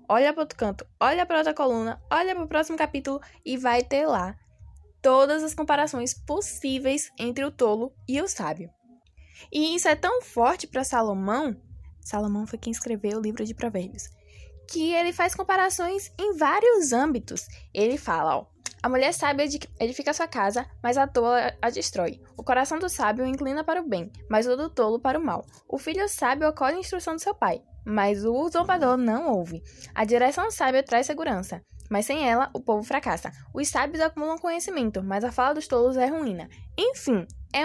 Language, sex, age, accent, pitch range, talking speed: Portuguese, female, 10-29, Brazilian, 225-310 Hz, 185 wpm